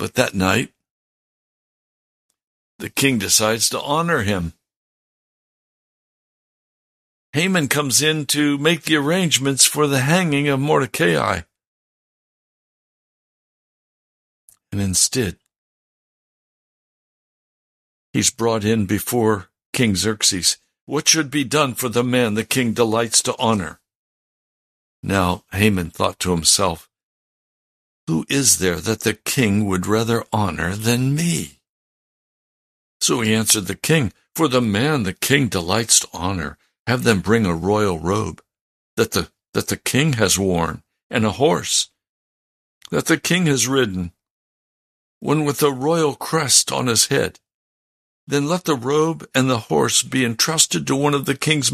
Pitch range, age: 100-150 Hz, 60-79